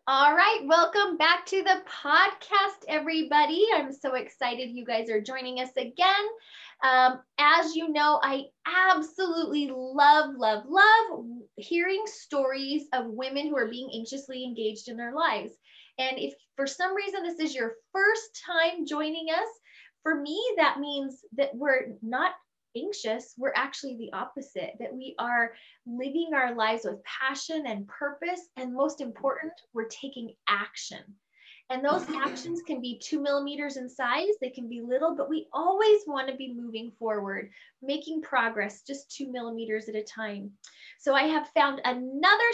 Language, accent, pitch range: English, American, 240-320 Hz